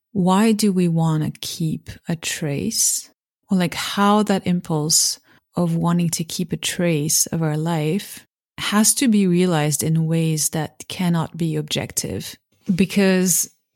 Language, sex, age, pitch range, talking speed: English, female, 30-49, 160-195 Hz, 140 wpm